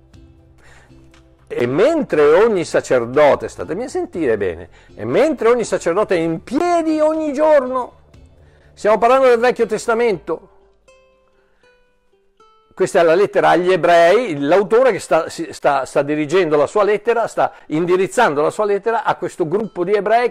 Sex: male